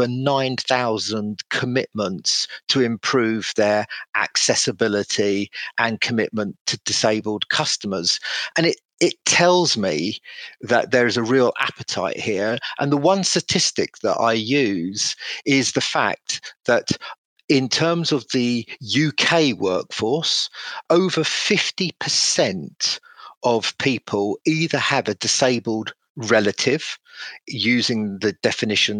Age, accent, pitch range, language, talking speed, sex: 40-59, British, 110-145 Hz, English, 110 wpm, male